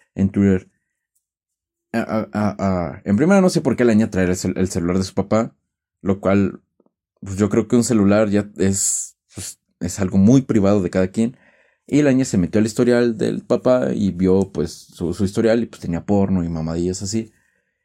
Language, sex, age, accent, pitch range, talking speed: Spanish, male, 30-49, Mexican, 95-125 Hz, 210 wpm